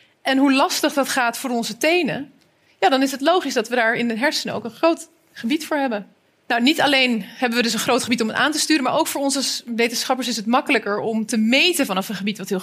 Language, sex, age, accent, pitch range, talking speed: Dutch, female, 30-49, Dutch, 235-315 Hz, 260 wpm